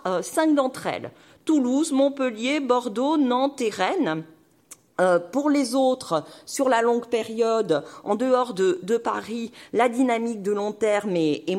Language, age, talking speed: French, 40-59, 150 wpm